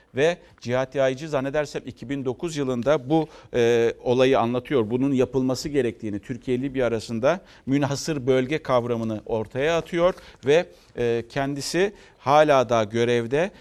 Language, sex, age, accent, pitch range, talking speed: Turkish, male, 50-69, native, 120-150 Hz, 120 wpm